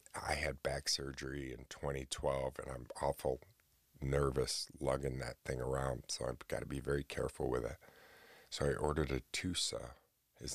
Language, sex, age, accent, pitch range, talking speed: English, male, 40-59, American, 65-75 Hz, 165 wpm